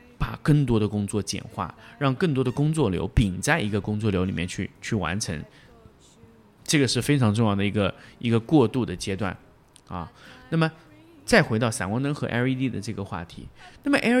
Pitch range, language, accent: 105-155 Hz, Chinese, native